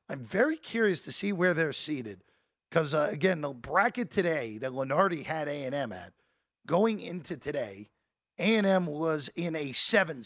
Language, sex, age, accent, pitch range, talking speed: English, male, 50-69, American, 135-195 Hz, 160 wpm